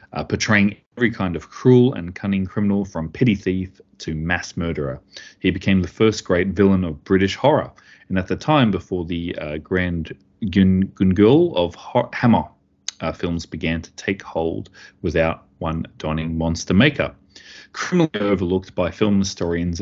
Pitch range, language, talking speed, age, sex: 85-100 Hz, English, 155 wpm, 30-49, male